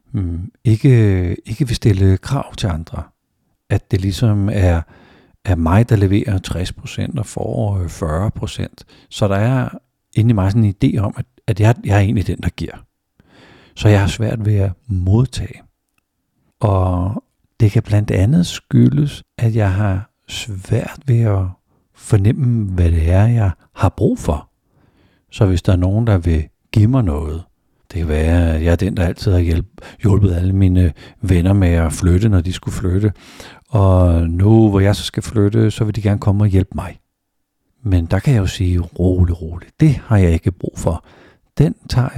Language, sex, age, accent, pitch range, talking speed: Danish, male, 60-79, native, 90-110 Hz, 180 wpm